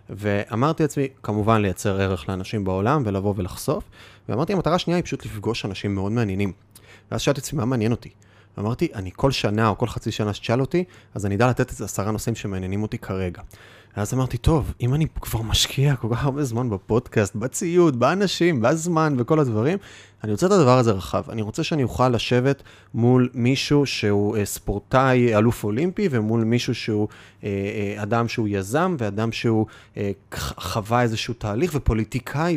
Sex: male